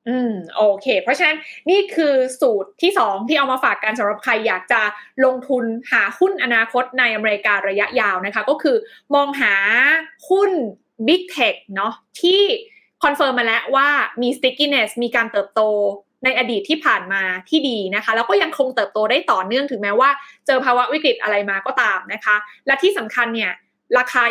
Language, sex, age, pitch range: Thai, female, 20-39, 220-295 Hz